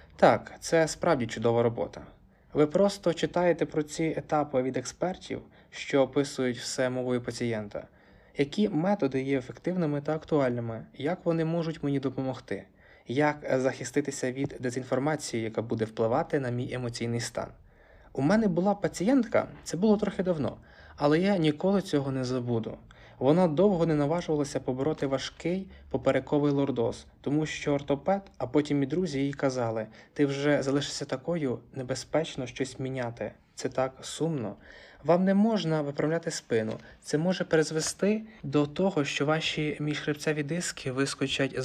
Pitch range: 130-160 Hz